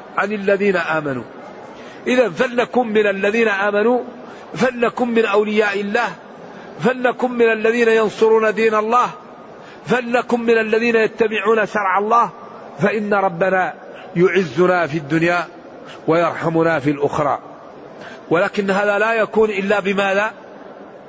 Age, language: 50-69, Arabic